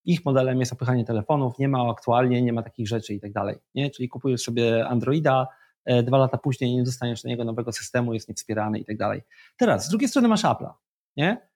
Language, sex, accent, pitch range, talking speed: Polish, male, native, 115-145 Hz, 210 wpm